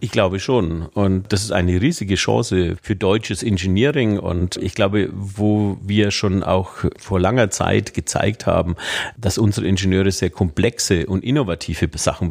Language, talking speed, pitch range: German, 155 wpm, 90-110 Hz